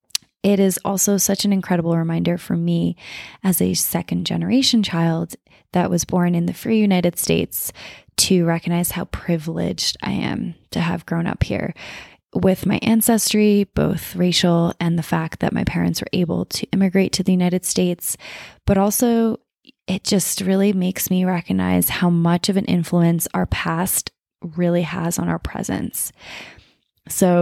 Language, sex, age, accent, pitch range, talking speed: English, female, 20-39, American, 170-195 Hz, 160 wpm